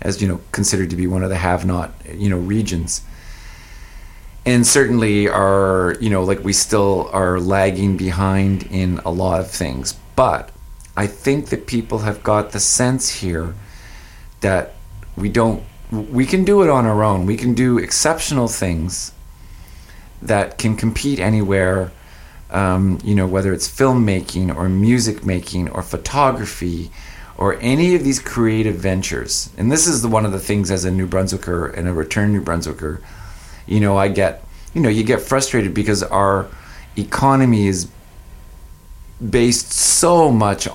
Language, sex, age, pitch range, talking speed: English, male, 40-59, 90-110 Hz, 160 wpm